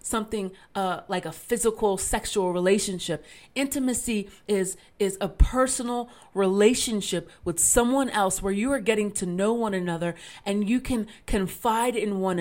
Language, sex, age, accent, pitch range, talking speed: English, female, 30-49, American, 185-230 Hz, 145 wpm